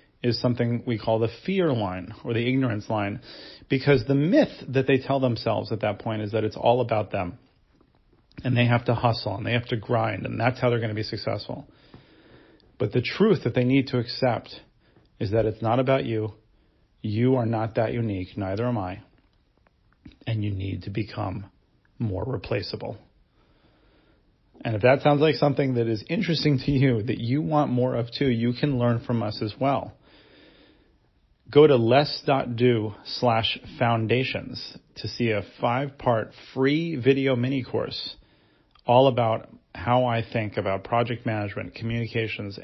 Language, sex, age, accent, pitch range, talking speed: English, male, 40-59, American, 110-130 Hz, 170 wpm